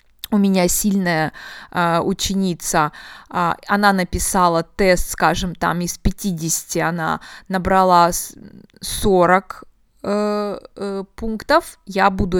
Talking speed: 100 wpm